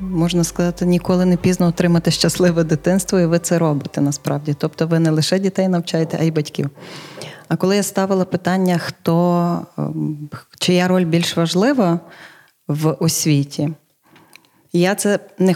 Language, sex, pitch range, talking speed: Ukrainian, female, 160-190 Hz, 145 wpm